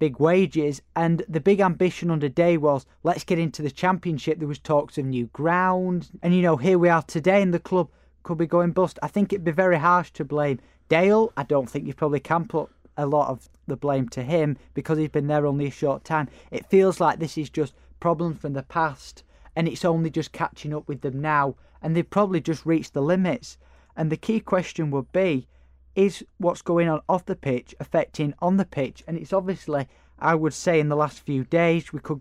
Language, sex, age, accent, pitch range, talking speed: English, male, 20-39, British, 140-170 Hz, 225 wpm